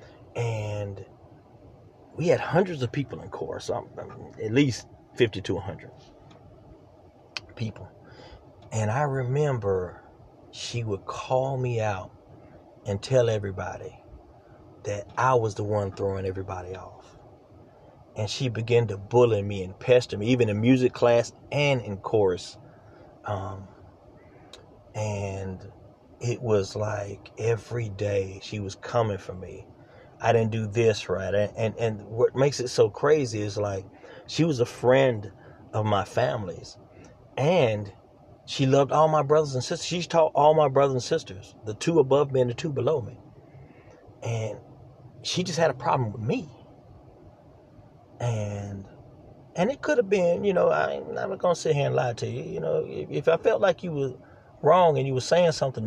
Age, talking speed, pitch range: 40-59, 160 wpm, 105-135 Hz